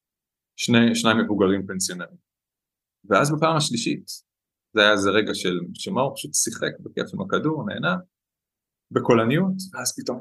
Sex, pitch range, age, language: male, 95-125 Hz, 30-49, Hebrew